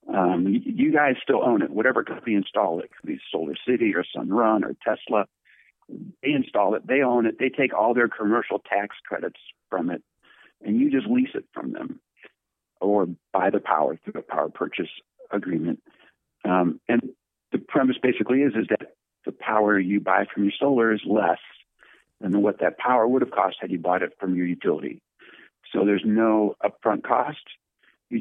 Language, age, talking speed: English, 60-79, 185 wpm